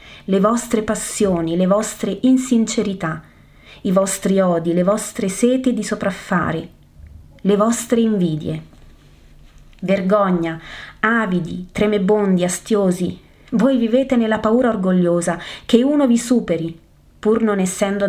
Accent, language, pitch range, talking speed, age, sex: native, Italian, 170-220 Hz, 110 wpm, 30-49, female